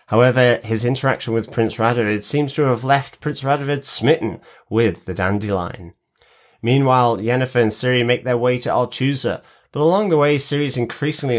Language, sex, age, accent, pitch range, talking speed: English, male, 30-49, British, 110-135 Hz, 165 wpm